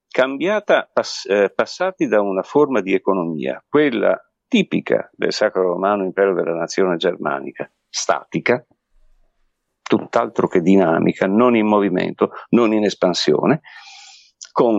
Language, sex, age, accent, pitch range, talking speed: Italian, male, 50-69, native, 95-125 Hz, 120 wpm